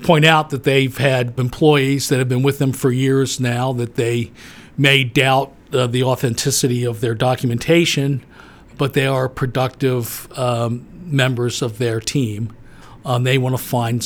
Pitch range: 120-140 Hz